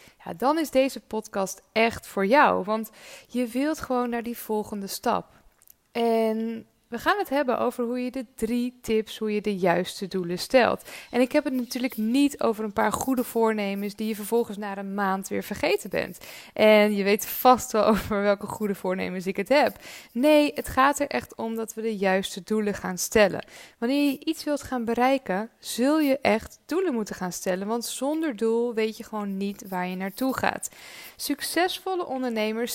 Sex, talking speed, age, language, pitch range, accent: female, 190 wpm, 20-39, Dutch, 210-270 Hz, Dutch